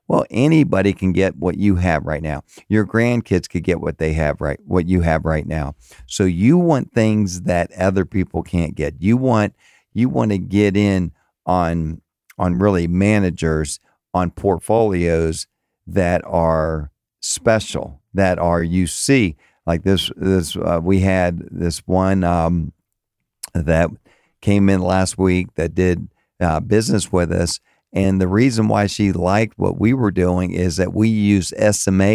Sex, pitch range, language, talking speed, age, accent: male, 85-105 Hz, English, 160 wpm, 50-69, American